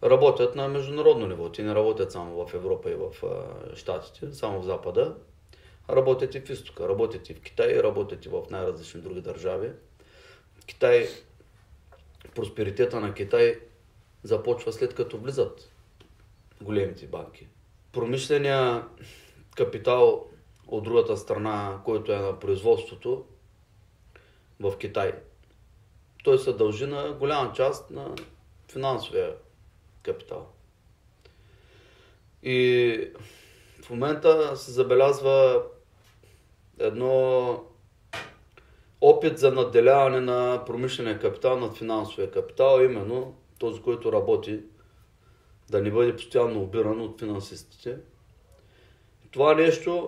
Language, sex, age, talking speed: Bulgarian, male, 30-49, 105 wpm